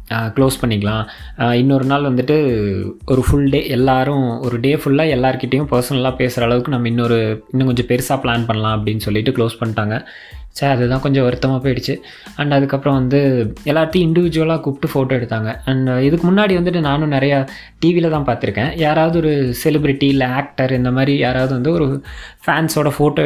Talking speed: 155 wpm